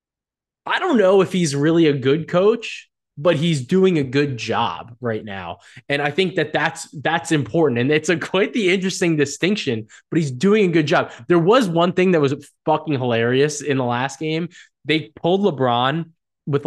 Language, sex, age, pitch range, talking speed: English, male, 20-39, 135-185 Hz, 190 wpm